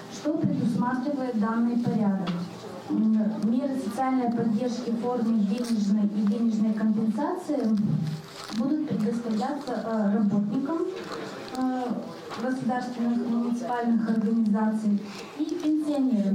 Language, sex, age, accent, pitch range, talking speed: Russian, female, 20-39, native, 215-250 Hz, 80 wpm